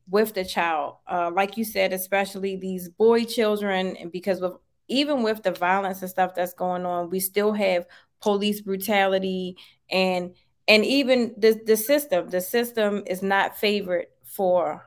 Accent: American